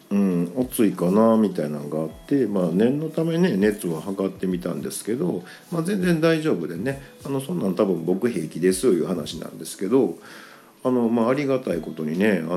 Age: 50-69